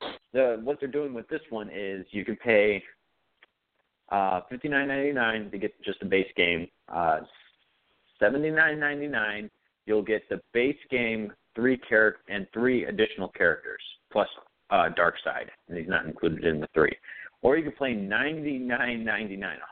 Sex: male